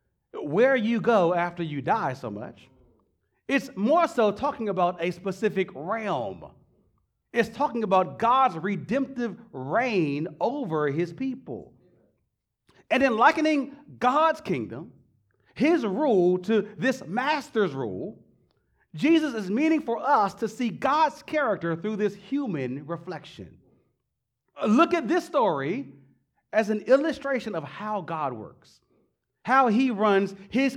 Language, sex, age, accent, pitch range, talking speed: English, male, 40-59, American, 165-245 Hz, 125 wpm